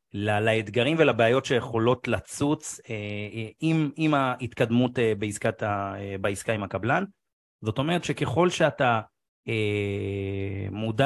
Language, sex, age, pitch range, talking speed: Hebrew, male, 30-49, 115-150 Hz, 115 wpm